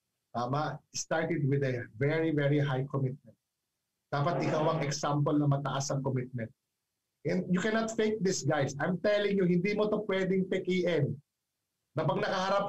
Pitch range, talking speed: 145-205 Hz, 155 wpm